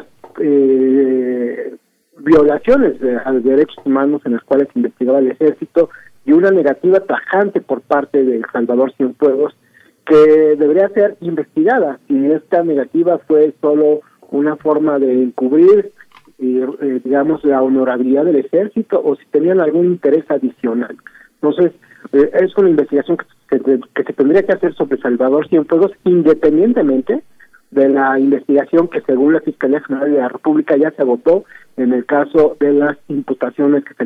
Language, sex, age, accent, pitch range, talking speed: Spanish, male, 50-69, Mexican, 130-155 Hz, 155 wpm